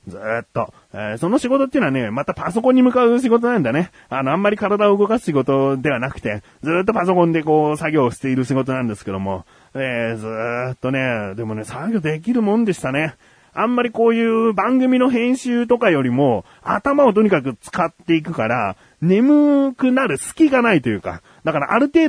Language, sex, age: Japanese, male, 30-49